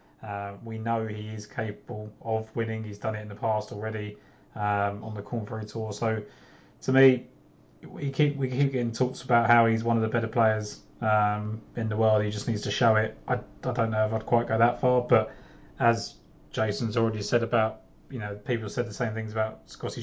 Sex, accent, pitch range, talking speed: male, British, 105-120 Hz, 215 wpm